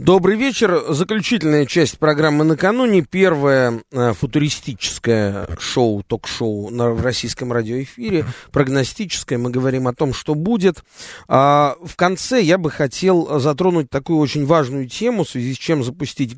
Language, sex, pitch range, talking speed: Russian, male, 125-170 Hz, 135 wpm